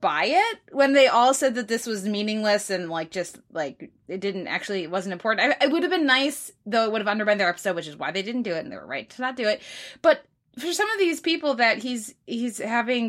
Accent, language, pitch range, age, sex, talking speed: American, English, 180-240 Hz, 20-39, female, 260 wpm